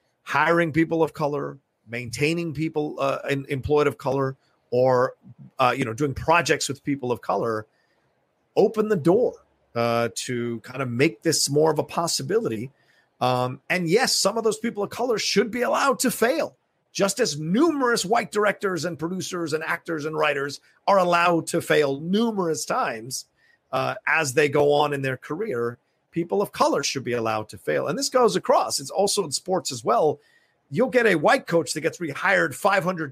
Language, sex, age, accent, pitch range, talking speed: English, male, 40-59, American, 135-185 Hz, 180 wpm